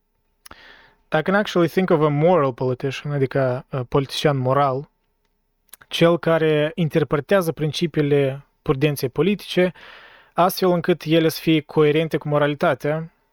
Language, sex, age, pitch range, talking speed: Romanian, male, 20-39, 135-170 Hz, 115 wpm